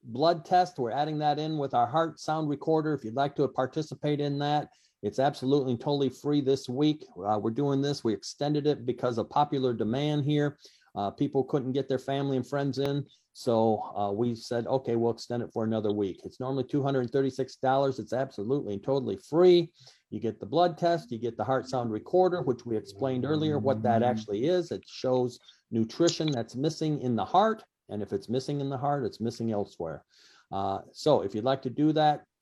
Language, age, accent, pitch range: English, 50-69, American, 120-150 Hz